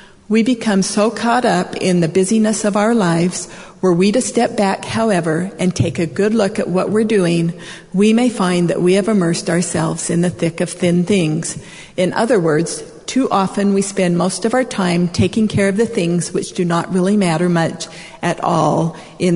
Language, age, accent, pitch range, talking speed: English, 50-69, American, 170-205 Hz, 205 wpm